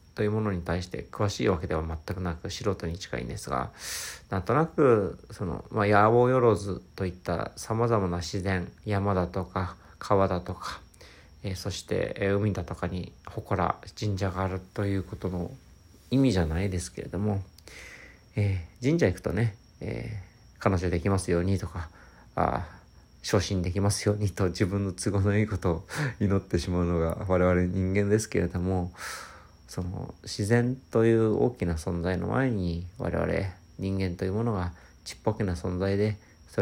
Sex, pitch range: male, 90-105 Hz